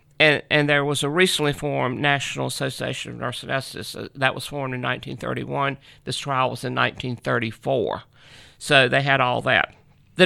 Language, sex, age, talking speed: English, male, 50-69, 160 wpm